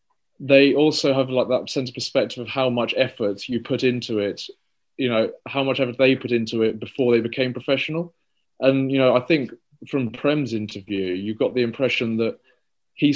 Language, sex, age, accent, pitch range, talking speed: English, male, 20-39, British, 115-130 Hz, 195 wpm